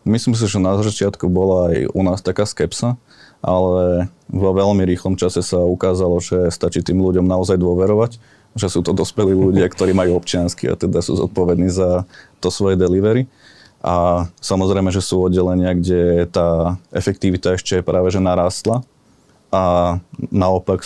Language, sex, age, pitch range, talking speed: Slovak, male, 20-39, 90-95 Hz, 155 wpm